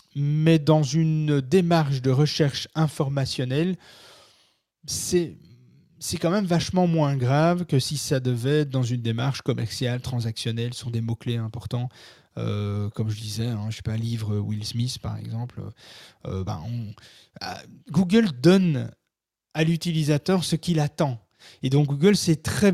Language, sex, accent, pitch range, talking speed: French, male, French, 125-160 Hz, 150 wpm